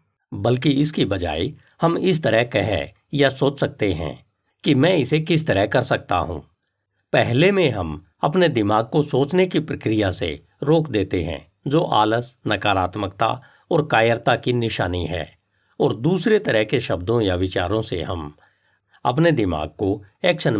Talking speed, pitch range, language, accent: 155 wpm, 100-150 Hz, Hindi, native